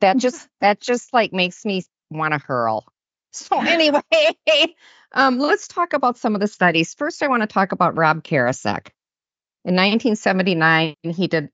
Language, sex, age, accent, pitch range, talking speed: English, female, 50-69, American, 170-250 Hz, 165 wpm